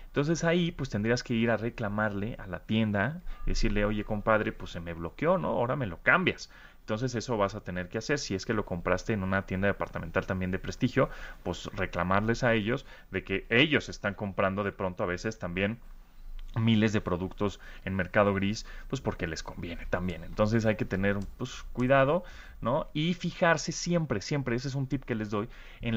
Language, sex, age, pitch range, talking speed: Spanish, male, 30-49, 100-125 Hz, 200 wpm